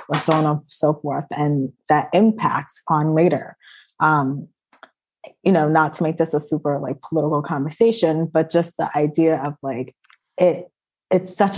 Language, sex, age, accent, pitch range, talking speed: English, female, 20-39, American, 150-175 Hz, 165 wpm